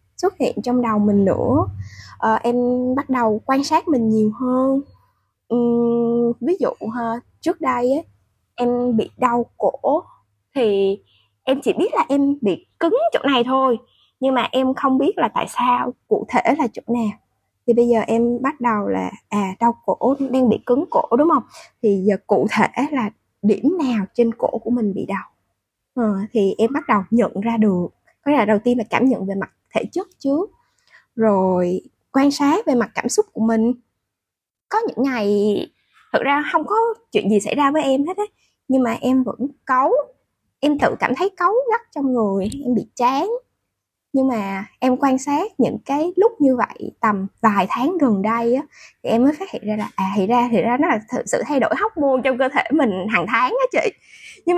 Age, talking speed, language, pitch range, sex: 20-39, 200 wpm, Vietnamese, 220-285 Hz, female